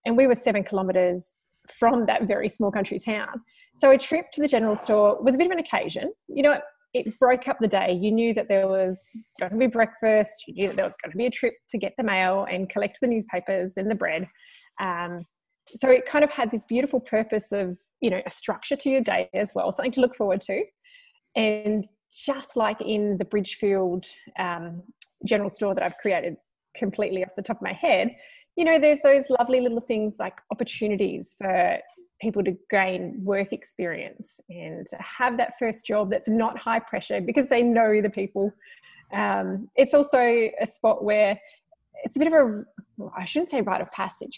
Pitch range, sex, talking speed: 200-265 Hz, female, 205 wpm